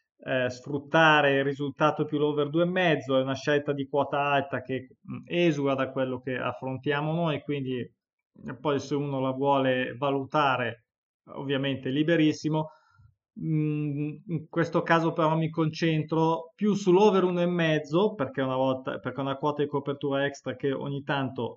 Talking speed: 135 wpm